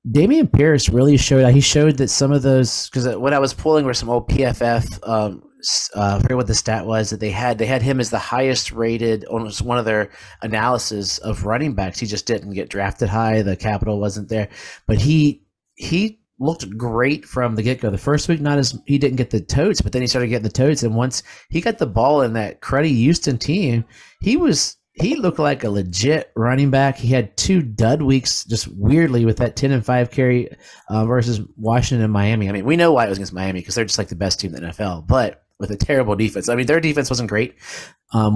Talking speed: 240 wpm